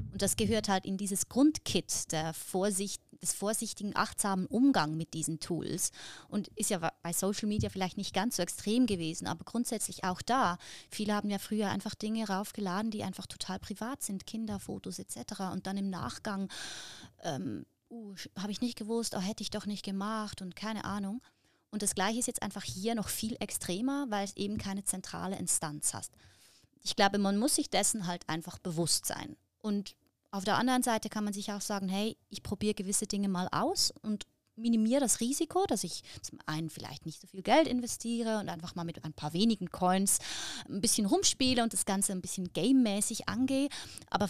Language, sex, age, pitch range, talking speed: German, female, 20-39, 190-230 Hz, 190 wpm